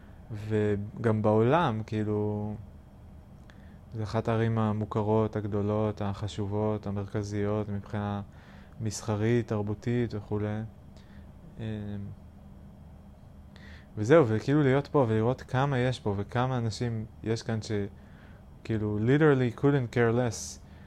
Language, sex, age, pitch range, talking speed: Hebrew, male, 20-39, 100-120 Hz, 90 wpm